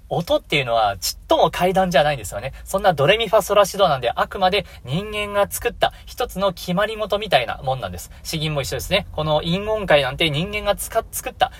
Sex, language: male, Japanese